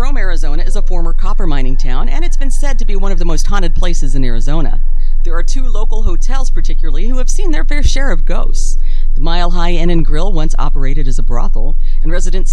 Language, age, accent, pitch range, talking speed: English, 40-59, American, 145-200 Hz, 235 wpm